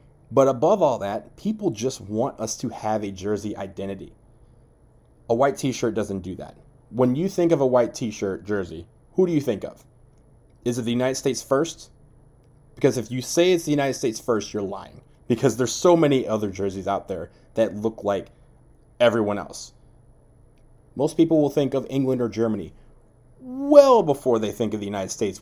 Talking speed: 185 wpm